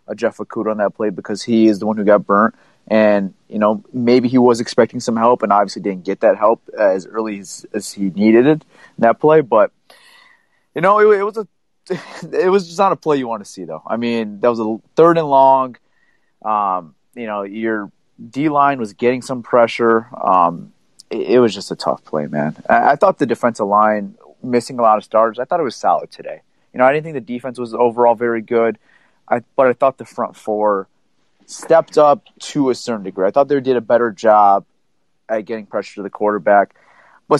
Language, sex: English, male